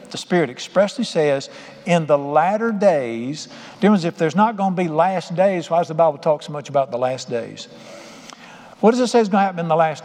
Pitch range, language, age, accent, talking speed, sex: 155-220 Hz, English, 60-79, American, 225 wpm, male